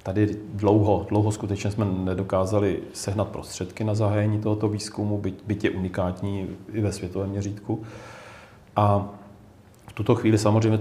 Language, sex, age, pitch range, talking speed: Czech, male, 40-59, 90-105 Hz, 130 wpm